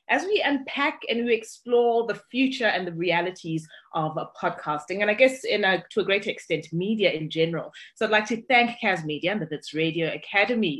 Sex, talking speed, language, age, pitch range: female, 210 wpm, English, 30-49, 155-205 Hz